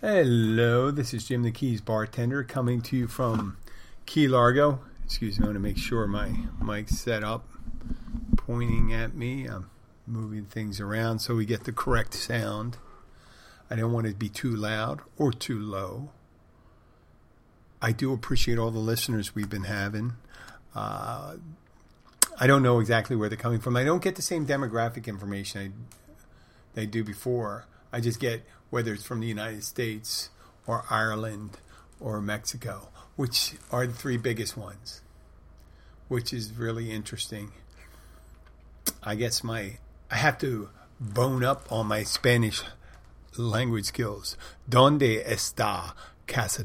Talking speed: 150 wpm